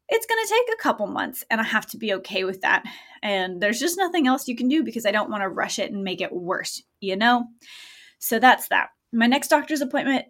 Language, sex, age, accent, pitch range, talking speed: English, female, 20-39, American, 205-250 Hz, 250 wpm